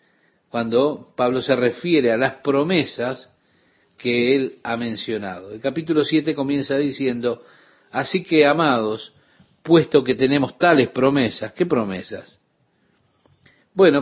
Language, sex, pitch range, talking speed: Spanish, male, 120-150 Hz, 115 wpm